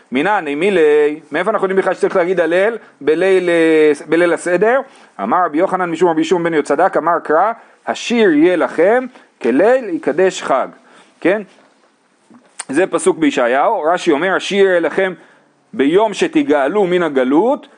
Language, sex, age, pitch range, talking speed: Hebrew, male, 40-59, 170-245 Hz, 140 wpm